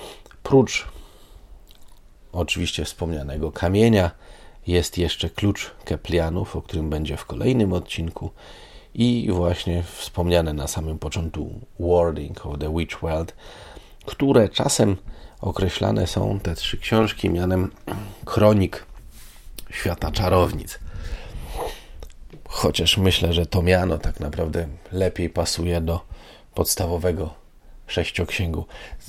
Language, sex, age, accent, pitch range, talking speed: Polish, male, 40-59, native, 80-100 Hz, 100 wpm